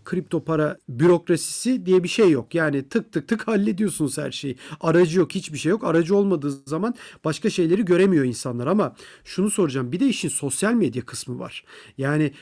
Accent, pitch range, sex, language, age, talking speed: native, 150-205 Hz, male, Turkish, 40-59, 180 wpm